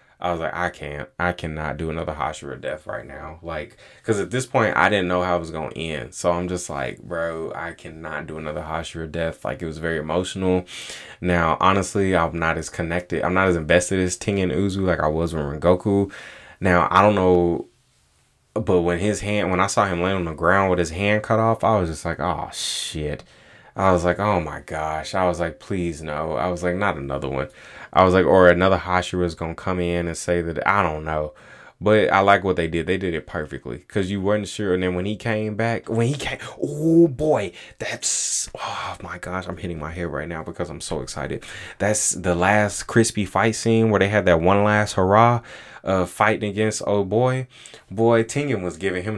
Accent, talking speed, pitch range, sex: American, 225 wpm, 85-105 Hz, male